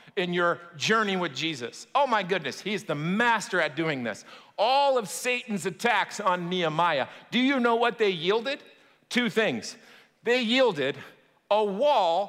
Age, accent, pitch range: 50-69, American, 185-245 Hz